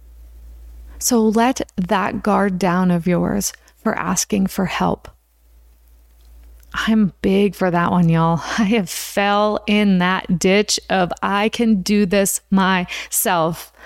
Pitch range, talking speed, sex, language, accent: 185-235 Hz, 125 wpm, female, English, American